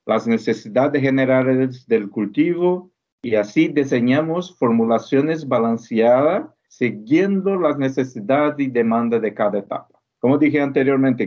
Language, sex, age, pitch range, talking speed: Spanish, male, 50-69, 115-155 Hz, 110 wpm